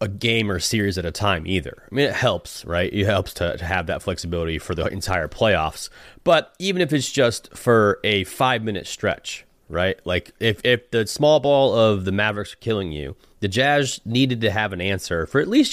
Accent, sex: American, male